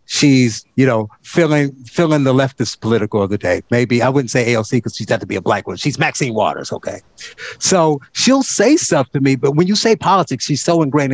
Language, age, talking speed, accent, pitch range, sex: English, 50-69, 225 wpm, American, 130-175 Hz, male